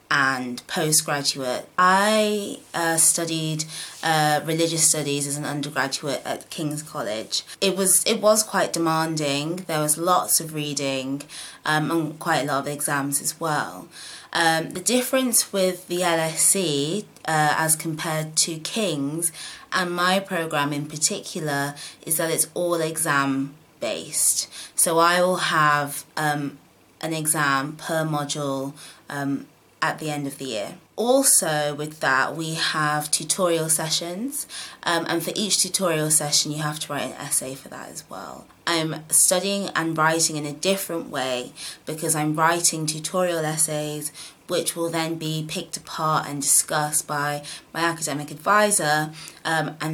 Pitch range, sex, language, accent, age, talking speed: 150-170 Hz, female, English, British, 20-39, 145 wpm